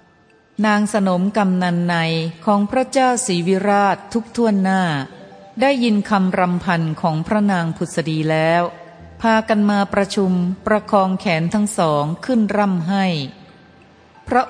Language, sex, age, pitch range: Thai, female, 30-49, 170-215 Hz